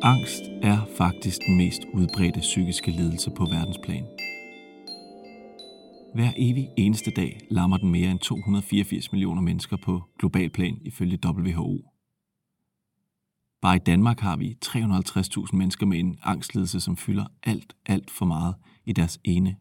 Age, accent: 40-59, native